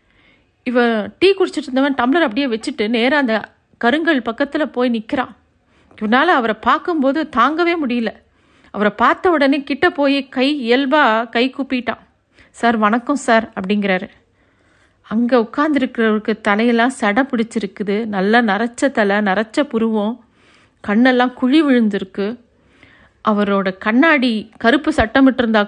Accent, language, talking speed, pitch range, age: native, Tamil, 110 wpm, 215-270 Hz, 50-69